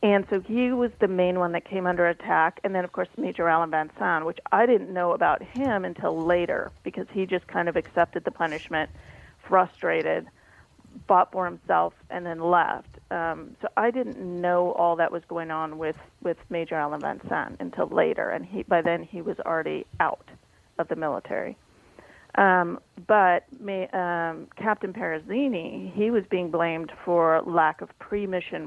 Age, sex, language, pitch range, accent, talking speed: 40-59, female, English, 165-190 Hz, American, 180 wpm